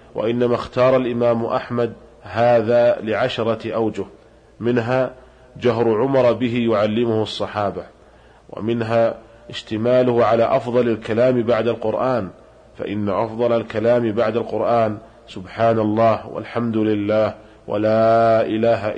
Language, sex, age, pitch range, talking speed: Arabic, male, 40-59, 105-120 Hz, 100 wpm